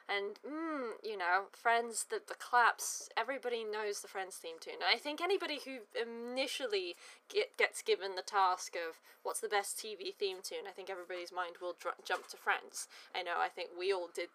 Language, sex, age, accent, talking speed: English, female, 20-39, British, 190 wpm